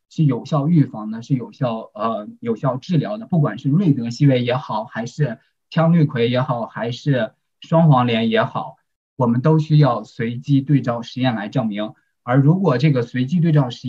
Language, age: Chinese, 20-39